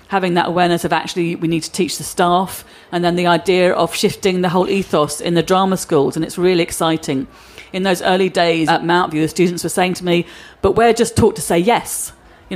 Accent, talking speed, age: British, 230 wpm, 40-59